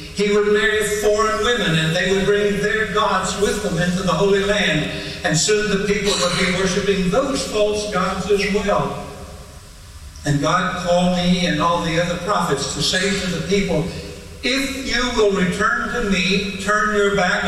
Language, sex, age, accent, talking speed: English, male, 60-79, American, 180 wpm